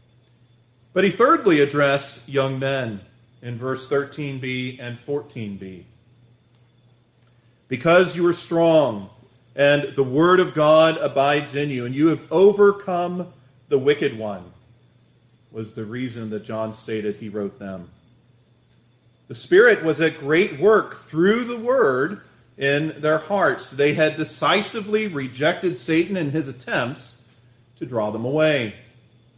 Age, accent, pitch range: 40-59, American, 120-185 Hz